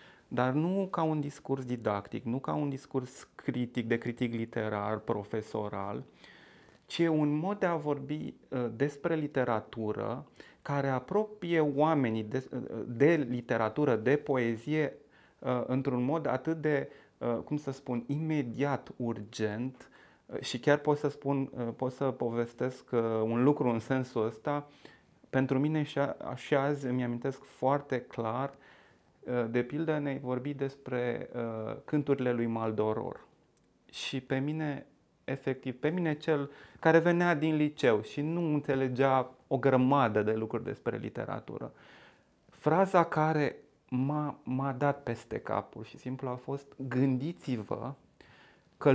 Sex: male